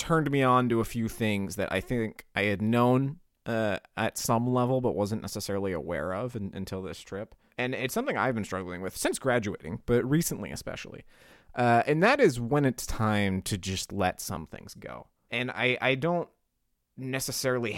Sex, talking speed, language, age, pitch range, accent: male, 185 wpm, English, 30-49, 100-125 Hz, American